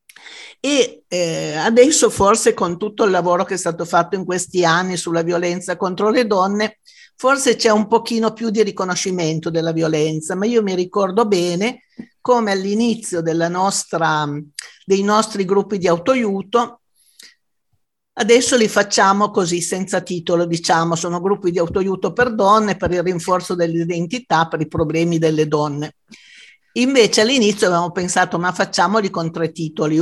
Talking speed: 145 wpm